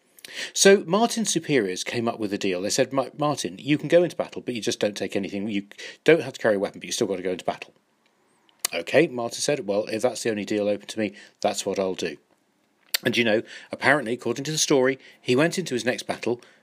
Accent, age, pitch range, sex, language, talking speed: British, 40-59, 105-150 Hz, male, English, 240 wpm